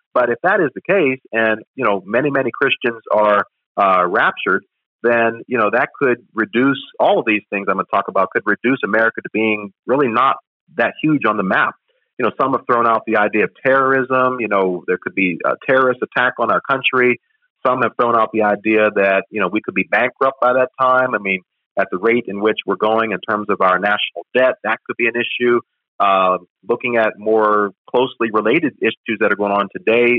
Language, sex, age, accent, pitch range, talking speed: English, male, 40-59, American, 105-125 Hz, 220 wpm